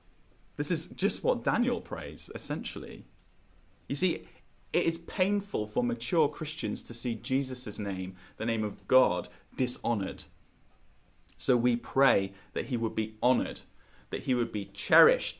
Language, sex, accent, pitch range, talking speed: English, male, British, 90-130 Hz, 145 wpm